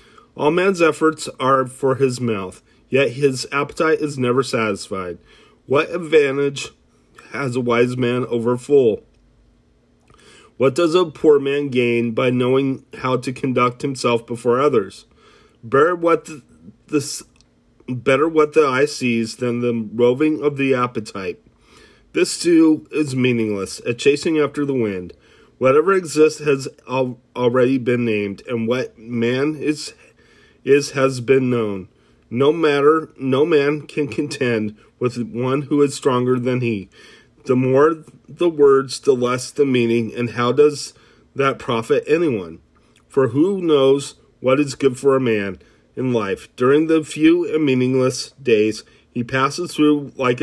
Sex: male